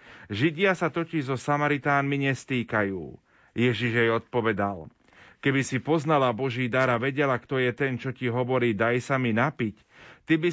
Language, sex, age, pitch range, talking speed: Slovak, male, 30-49, 115-135 Hz, 160 wpm